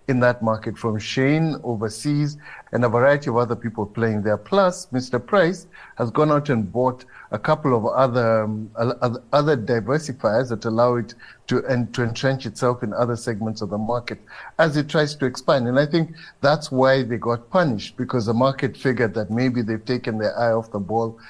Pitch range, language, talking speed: 115-140 Hz, English, 185 wpm